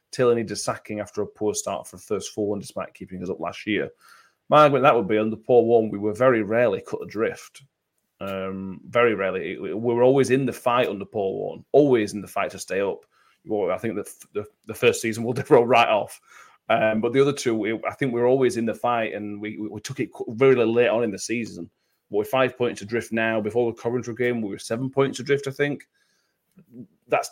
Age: 30-49